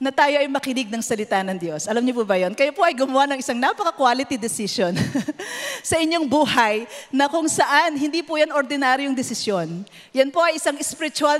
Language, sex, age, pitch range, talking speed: English, female, 40-59, 230-300 Hz, 190 wpm